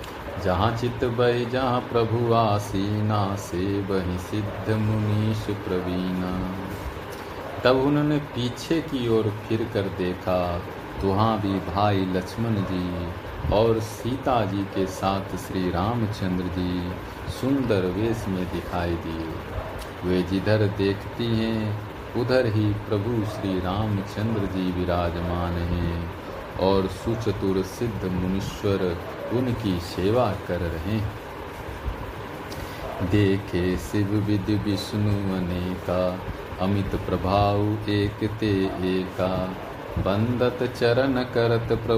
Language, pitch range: Hindi, 95-110 Hz